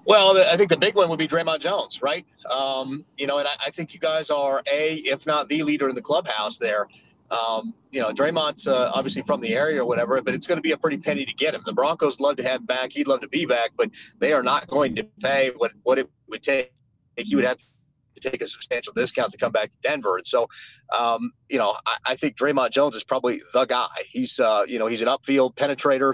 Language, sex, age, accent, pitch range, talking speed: English, male, 30-49, American, 125-150 Hz, 260 wpm